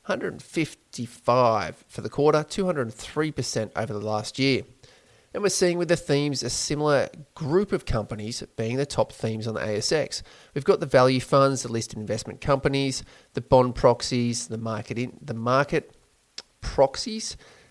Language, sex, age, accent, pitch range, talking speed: English, male, 30-49, Australian, 115-140 Hz, 155 wpm